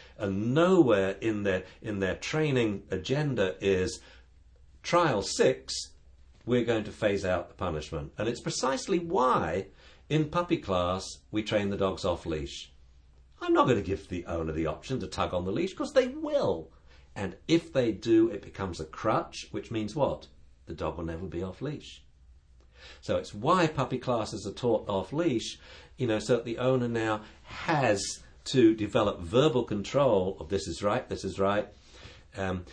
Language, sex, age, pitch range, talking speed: English, male, 50-69, 75-110 Hz, 175 wpm